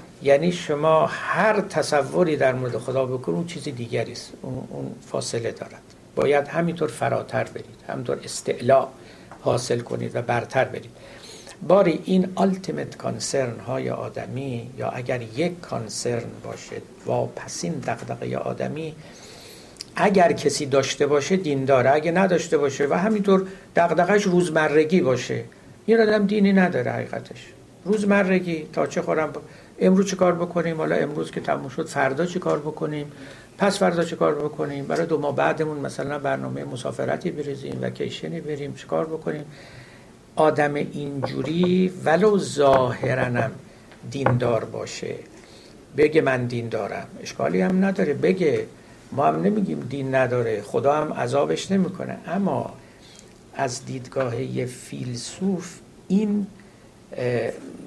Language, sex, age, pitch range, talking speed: Persian, male, 60-79, 130-180 Hz, 130 wpm